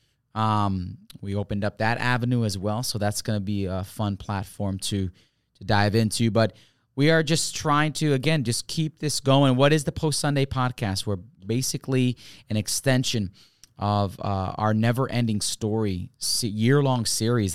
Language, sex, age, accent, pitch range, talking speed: English, male, 20-39, American, 100-130 Hz, 170 wpm